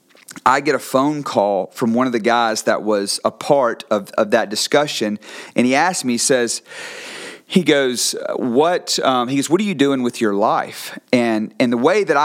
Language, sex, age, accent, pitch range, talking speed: English, male, 40-59, American, 105-145 Hz, 205 wpm